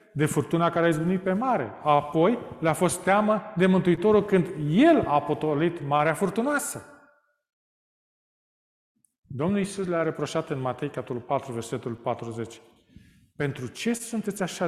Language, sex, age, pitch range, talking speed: Romanian, male, 40-59, 150-215 Hz, 130 wpm